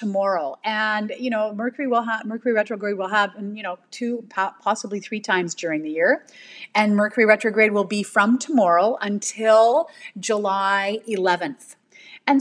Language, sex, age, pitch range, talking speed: English, female, 30-49, 195-245 Hz, 155 wpm